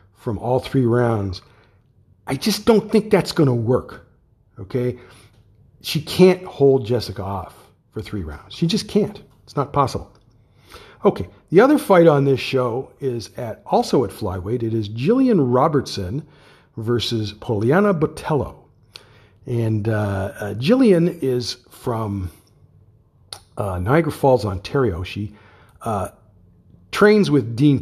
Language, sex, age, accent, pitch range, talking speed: English, male, 50-69, American, 105-140 Hz, 130 wpm